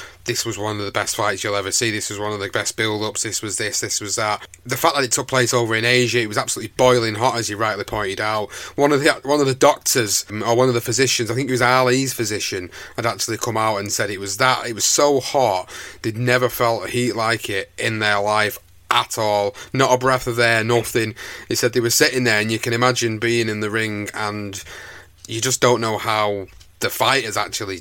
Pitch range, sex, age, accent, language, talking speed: 105-130 Hz, male, 30-49, British, English, 245 wpm